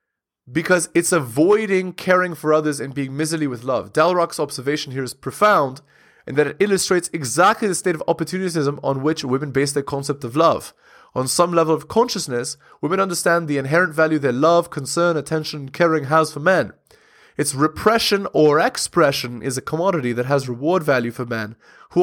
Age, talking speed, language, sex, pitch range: 20-39, 175 wpm, English, male, 135-170 Hz